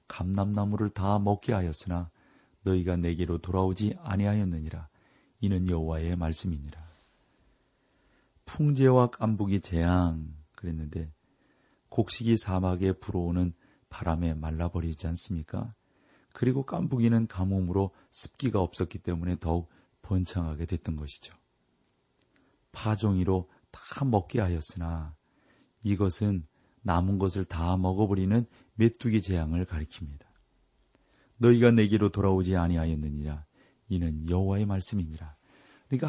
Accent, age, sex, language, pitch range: native, 40-59, male, Korean, 85-110 Hz